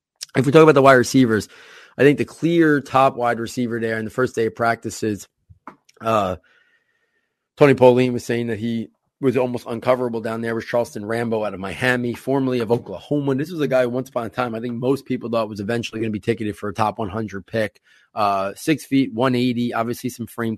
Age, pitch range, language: 30-49, 110-125 Hz, English